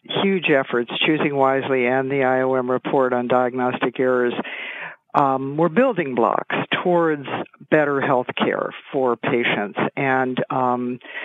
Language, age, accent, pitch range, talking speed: English, 60-79, American, 130-155 Hz, 125 wpm